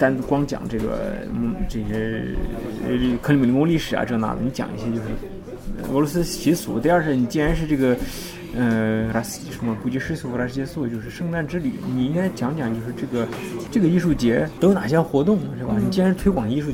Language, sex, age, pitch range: Chinese, male, 20-39, 120-150 Hz